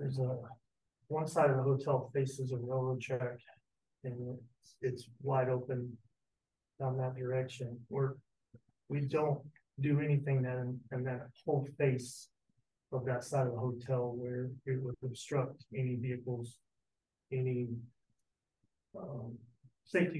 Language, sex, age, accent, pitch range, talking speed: English, male, 30-49, American, 120-135 Hz, 130 wpm